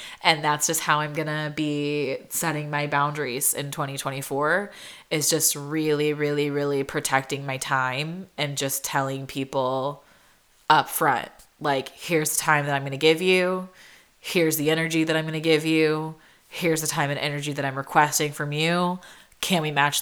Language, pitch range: English, 150-180 Hz